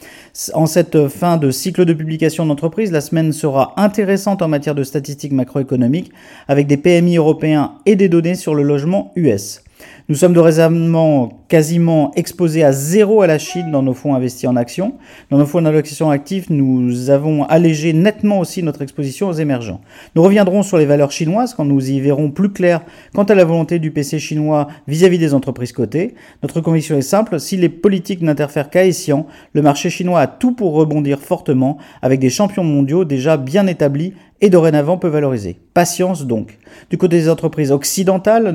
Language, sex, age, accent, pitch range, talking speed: French, male, 40-59, French, 145-185 Hz, 185 wpm